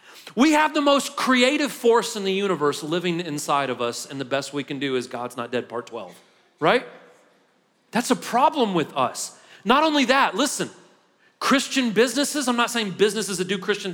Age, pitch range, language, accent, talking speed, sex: 40-59, 175-230 Hz, English, American, 190 wpm, male